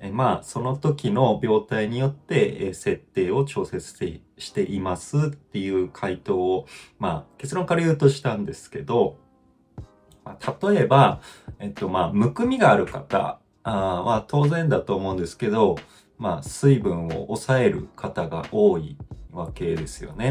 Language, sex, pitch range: Japanese, male, 95-140 Hz